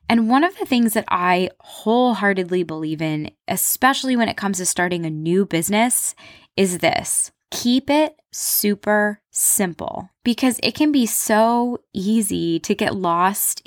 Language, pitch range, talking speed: English, 170-240 Hz, 150 wpm